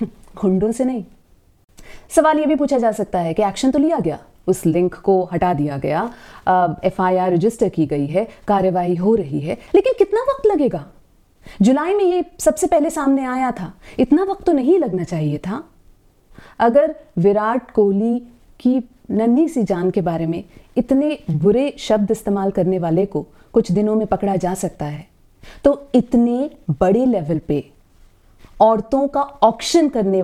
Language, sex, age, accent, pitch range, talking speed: Hindi, female, 30-49, native, 160-250 Hz, 160 wpm